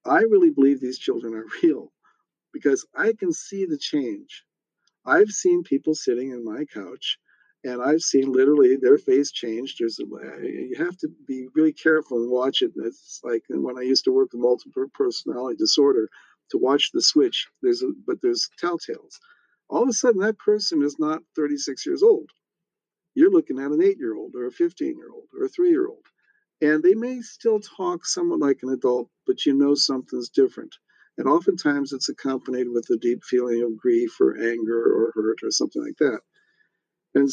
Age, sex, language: 50-69, male, English